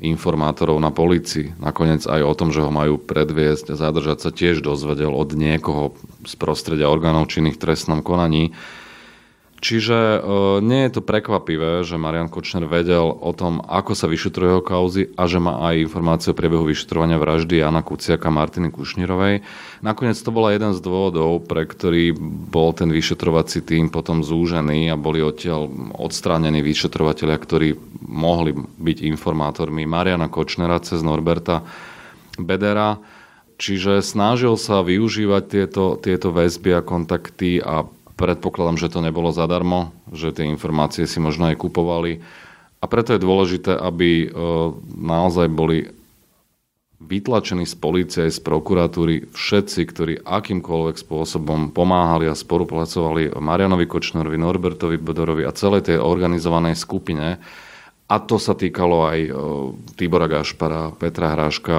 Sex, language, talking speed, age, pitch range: male, Slovak, 140 wpm, 30-49, 80-90 Hz